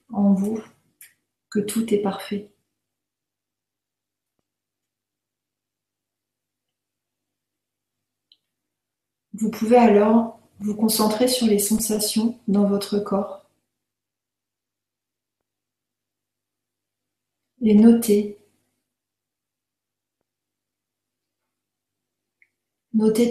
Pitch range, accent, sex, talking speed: 195-220 Hz, French, female, 50 wpm